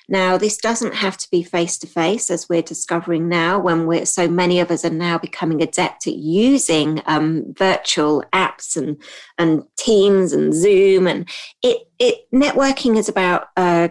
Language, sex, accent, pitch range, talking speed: English, female, British, 160-205 Hz, 175 wpm